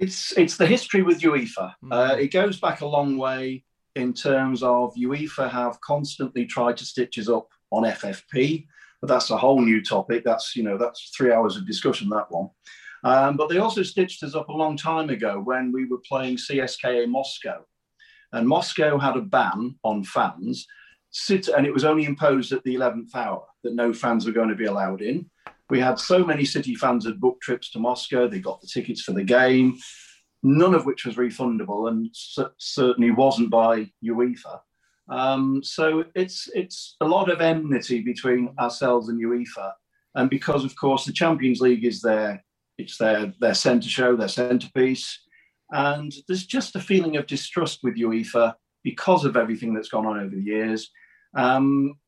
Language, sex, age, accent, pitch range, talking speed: English, male, 40-59, British, 120-145 Hz, 185 wpm